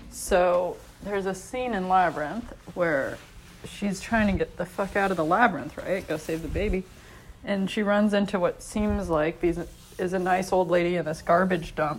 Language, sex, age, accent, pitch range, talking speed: English, female, 20-39, American, 180-220 Hz, 195 wpm